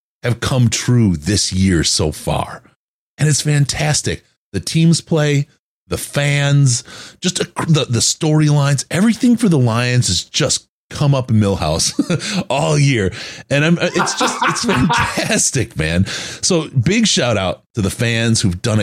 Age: 30-49